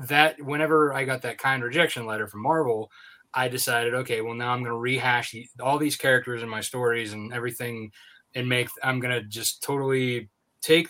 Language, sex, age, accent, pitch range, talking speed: English, male, 20-39, American, 115-135 Hz, 185 wpm